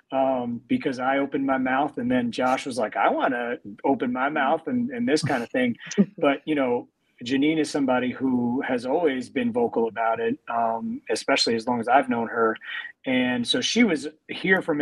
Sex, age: male, 30-49